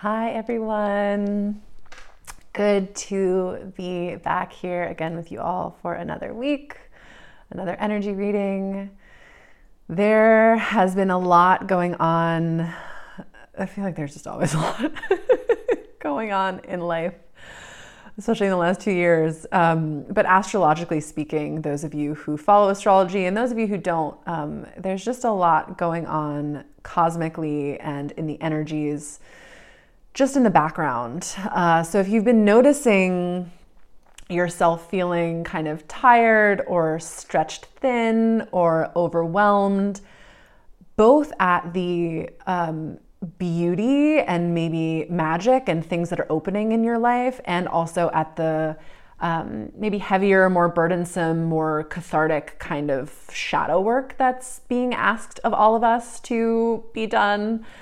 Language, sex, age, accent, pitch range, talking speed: English, female, 30-49, American, 165-215 Hz, 135 wpm